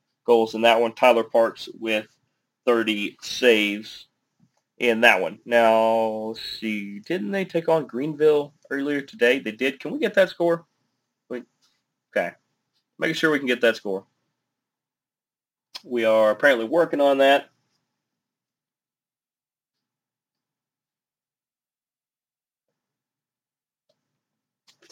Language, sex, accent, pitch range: English, male, American, 115-135 Hz